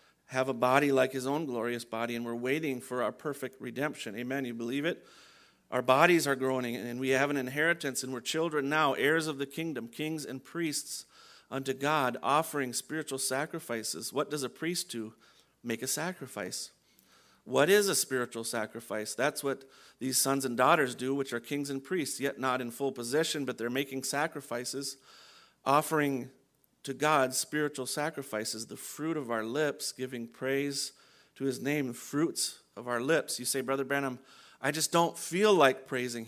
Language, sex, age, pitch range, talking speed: English, male, 40-59, 120-150 Hz, 180 wpm